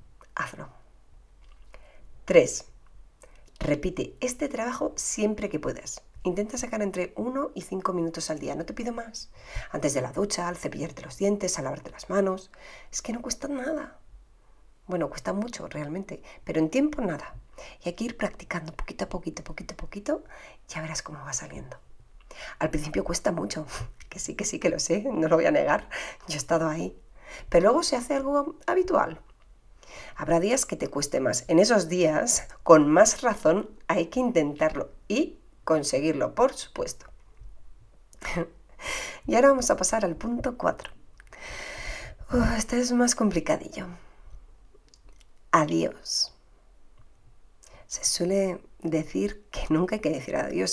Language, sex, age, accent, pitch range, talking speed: Spanish, female, 40-59, Spanish, 165-255 Hz, 155 wpm